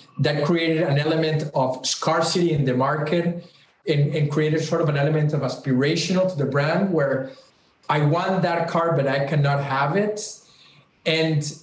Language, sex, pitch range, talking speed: English, male, 145-170 Hz, 165 wpm